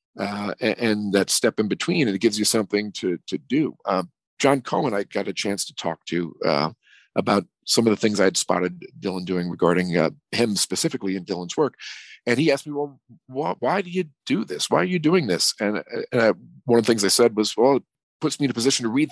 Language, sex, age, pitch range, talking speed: English, male, 40-59, 95-120 Hz, 240 wpm